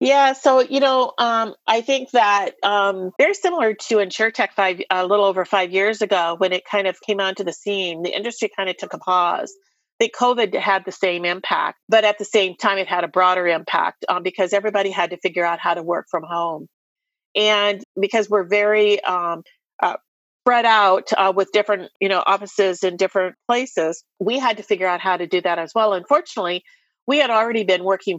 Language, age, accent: English, 40-59, American